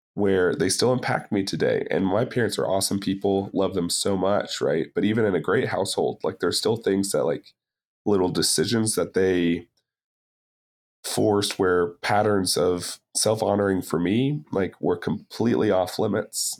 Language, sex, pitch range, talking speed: English, male, 85-100 Hz, 165 wpm